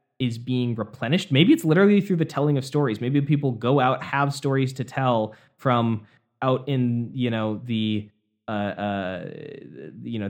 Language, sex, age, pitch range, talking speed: English, male, 20-39, 110-140 Hz, 170 wpm